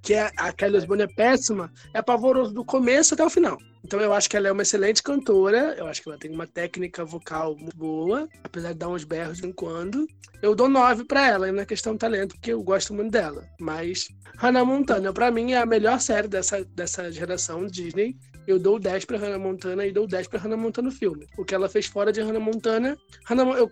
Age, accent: 20-39, Brazilian